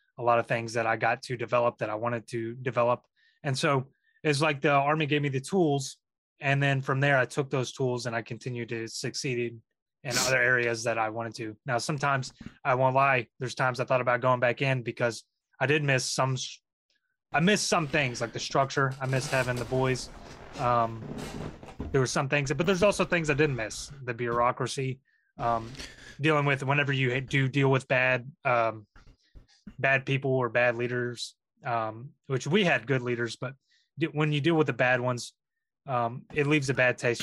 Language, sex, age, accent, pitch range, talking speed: English, male, 20-39, American, 120-140 Hz, 200 wpm